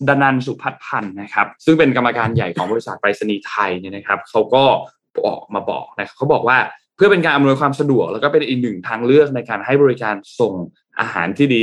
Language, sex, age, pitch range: Thai, male, 10-29, 110-140 Hz